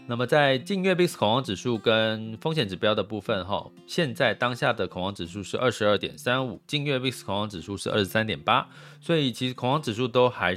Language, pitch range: Chinese, 105-140 Hz